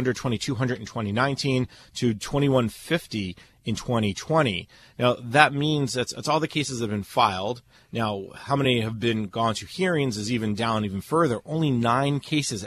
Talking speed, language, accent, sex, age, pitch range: 155 wpm, English, American, male, 30-49, 115-145 Hz